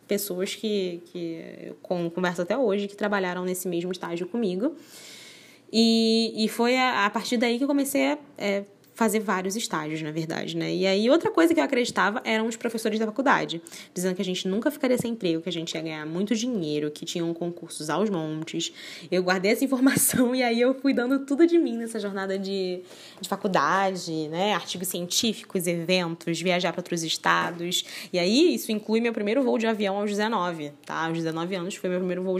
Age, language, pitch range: 10-29, Portuguese, 175-225 Hz